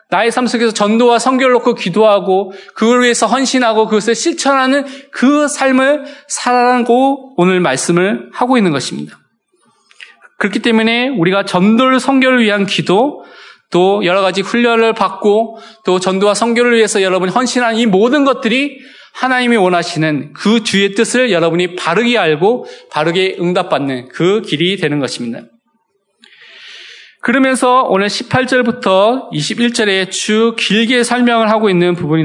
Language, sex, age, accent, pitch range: Korean, male, 20-39, native, 190-250 Hz